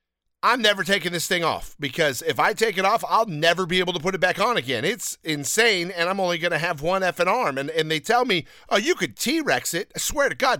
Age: 50-69